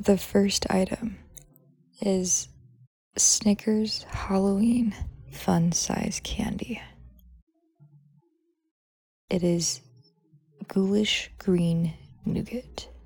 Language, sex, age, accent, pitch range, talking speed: English, female, 20-39, American, 130-200 Hz, 60 wpm